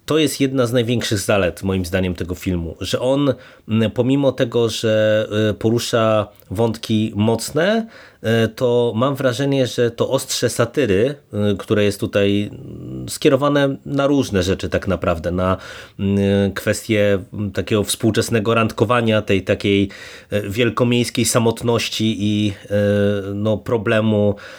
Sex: male